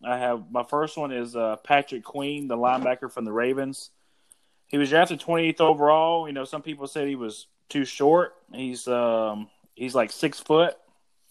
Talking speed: 185 wpm